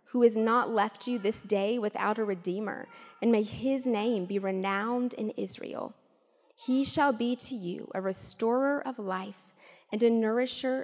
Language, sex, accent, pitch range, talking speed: English, female, American, 190-245 Hz, 165 wpm